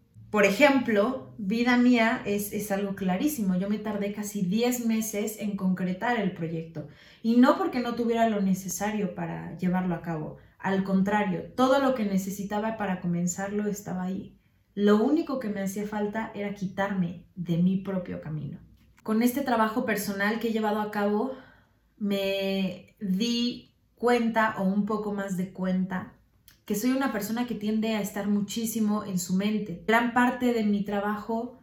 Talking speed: 165 wpm